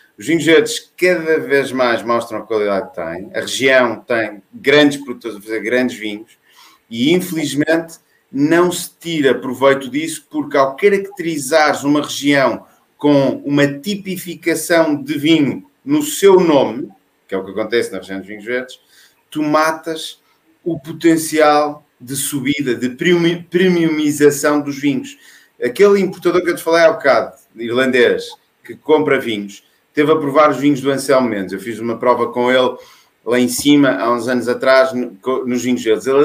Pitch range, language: 130-170 Hz, Portuguese